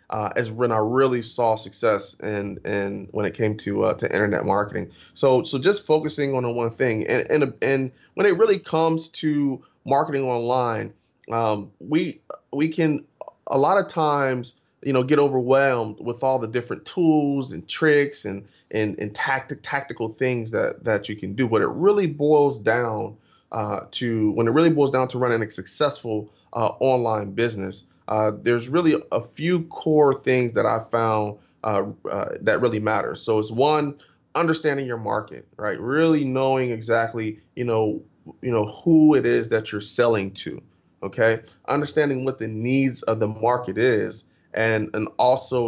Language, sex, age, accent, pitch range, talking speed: English, male, 30-49, American, 110-140 Hz, 175 wpm